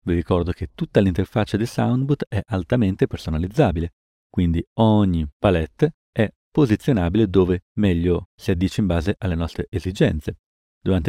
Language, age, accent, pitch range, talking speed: Italian, 40-59, native, 85-110 Hz, 135 wpm